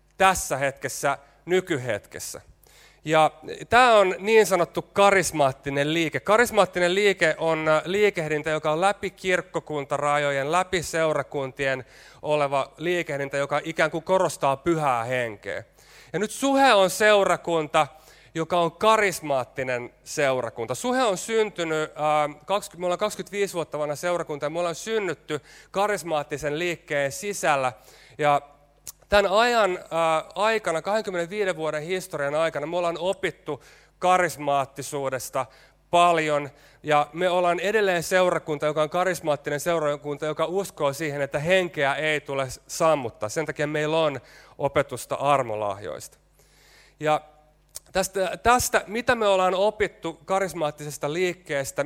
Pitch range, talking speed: 145-185 Hz, 110 wpm